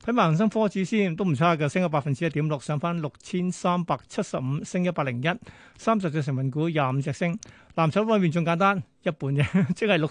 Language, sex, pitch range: Chinese, male, 150-185 Hz